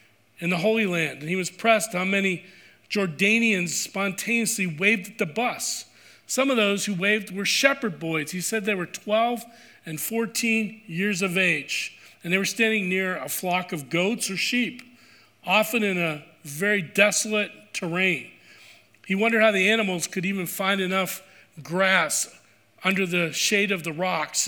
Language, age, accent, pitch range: English, 40-59, American, 180-215 Hz